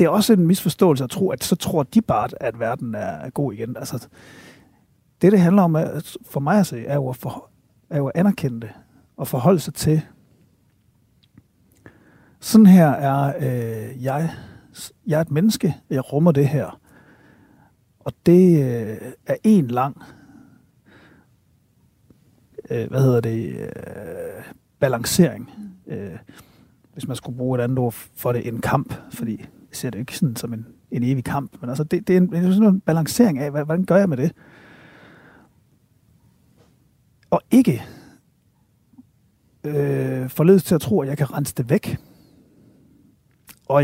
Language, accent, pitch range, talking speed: Danish, native, 125-165 Hz, 155 wpm